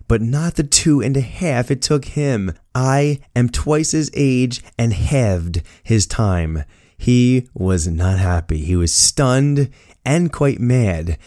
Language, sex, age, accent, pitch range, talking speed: English, male, 20-39, American, 90-135 Hz, 155 wpm